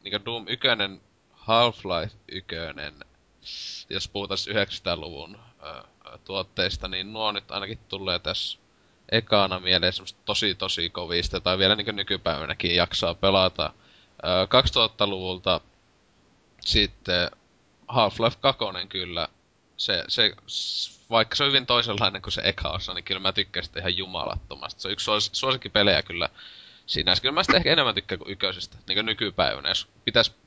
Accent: native